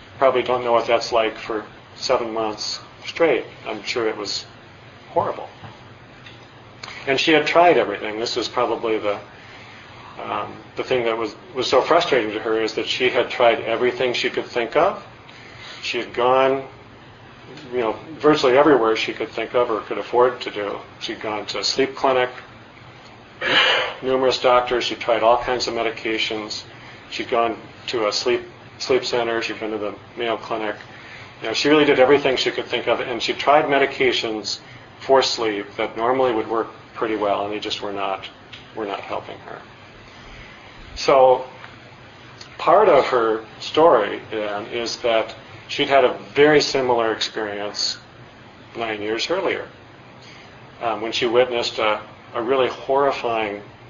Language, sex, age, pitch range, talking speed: English, male, 40-59, 110-125 Hz, 160 wpm